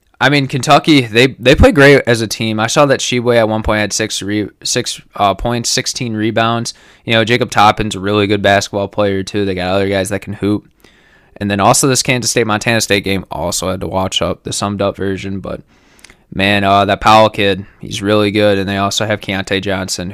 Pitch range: 95-115 Hz